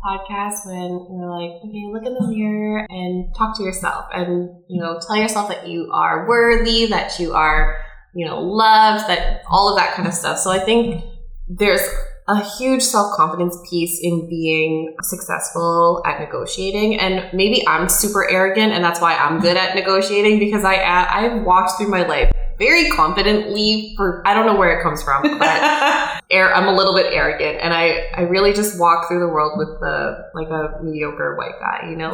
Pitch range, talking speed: 170-210 Hz, 190 wpm